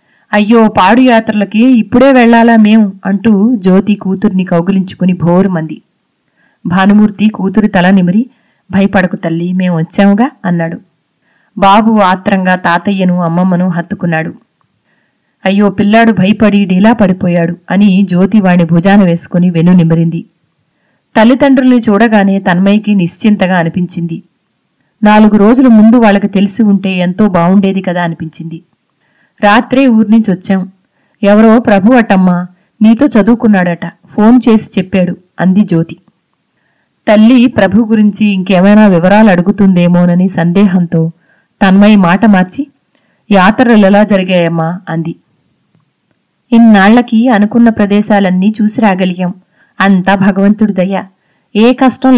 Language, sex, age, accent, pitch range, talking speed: Telugu, female, 30-49, native, 185-220 Hz, 100 wpm